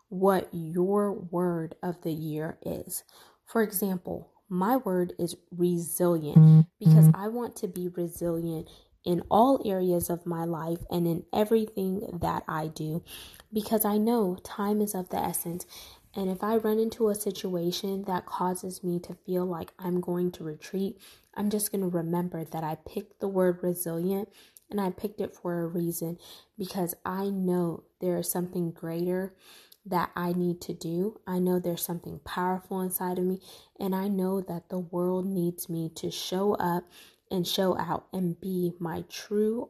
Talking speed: 170 wpm